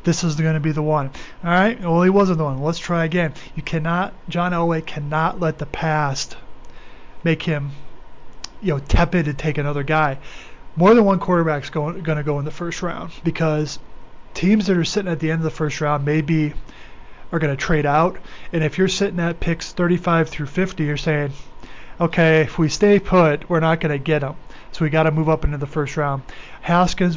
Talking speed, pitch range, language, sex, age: 215 wpm, 150-170 Hz, English, male, 30-49